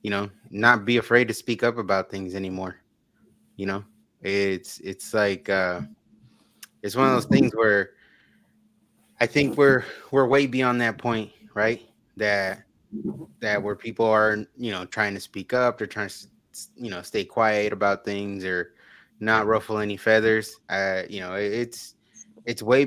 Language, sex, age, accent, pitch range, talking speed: English, male, 20-39, American, 100-120 Hz, 165 wpm